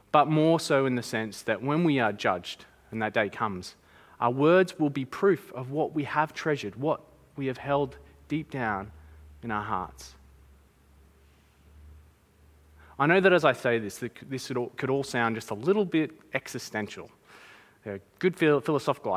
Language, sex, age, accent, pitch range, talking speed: English, male, 20-39, Australian, 110-175 Hz, 170 wpm